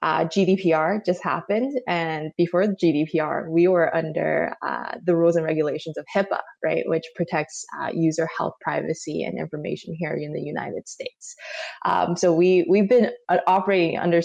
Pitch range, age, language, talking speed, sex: 165-195 Hz, 20-39, English, 170 wpm, female